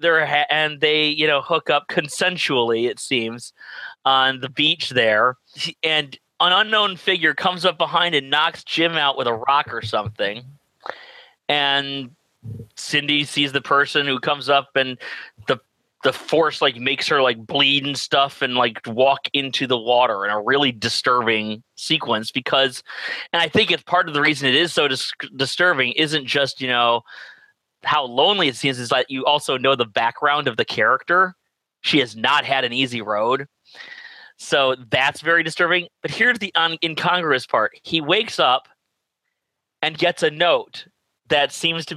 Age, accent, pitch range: 30-49, American, 125-160 Hz